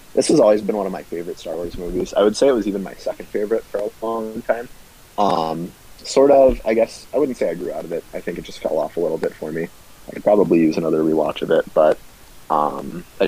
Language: English